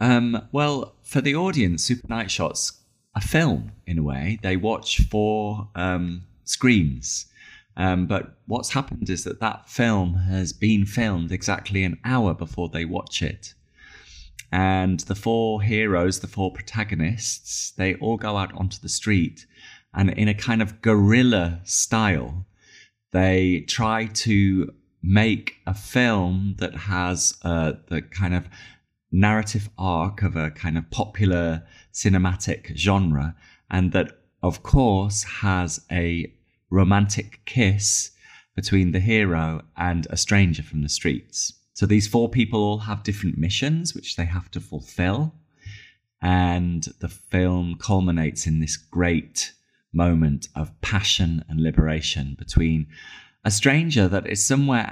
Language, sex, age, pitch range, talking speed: Bulgarian, male, 30-49, 85-110 Hz, 135 wpm